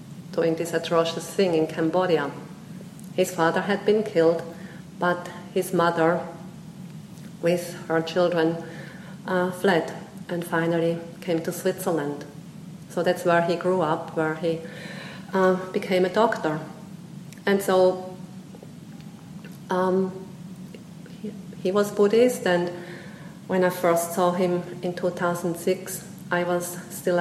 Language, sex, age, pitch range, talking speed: English, female, 40-59, 170-190 Hz, 120 wpm